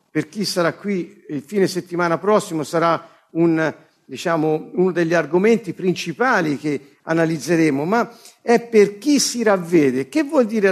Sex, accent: male, native